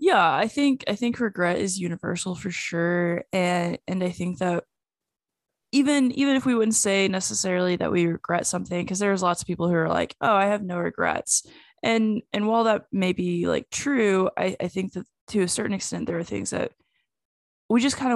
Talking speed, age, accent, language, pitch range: 205 wpm, 10-29, American, English, 180-215 Hz